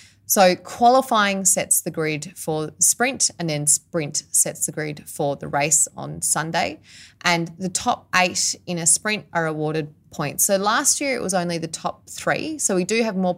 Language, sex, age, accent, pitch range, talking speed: English, female, 20-39, Australian, 155-185 Hz, 190 wpm